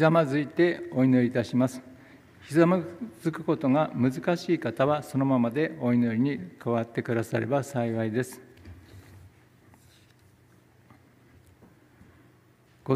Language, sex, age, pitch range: Japanese, male, 60-79, 125-150 Hz